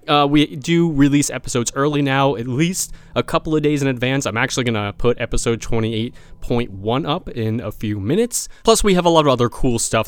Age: 20-39